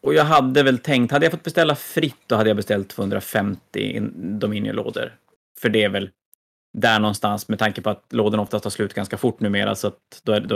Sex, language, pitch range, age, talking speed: male, Swedish, 105-115 Hz, 30-49, 205 wpm